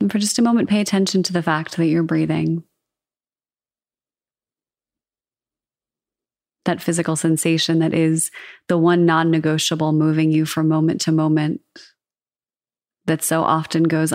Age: 30-49